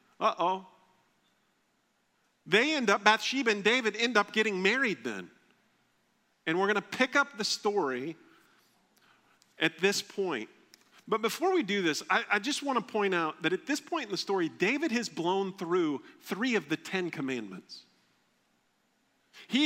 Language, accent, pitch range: English, American, 155-230 Hz